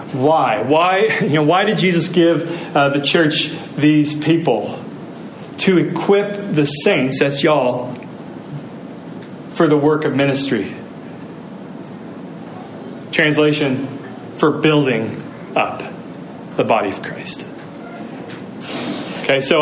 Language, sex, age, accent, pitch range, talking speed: English, male, 30-49, American, 145-175 Hz, 100 wpm